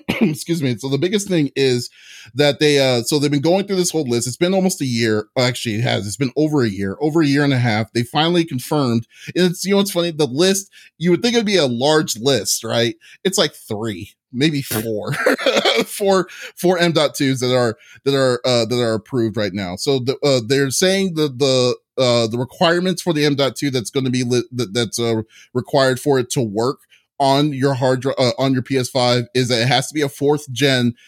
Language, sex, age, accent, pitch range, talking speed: English, male, 30-49, American, 125-155 Hz, 230 wpm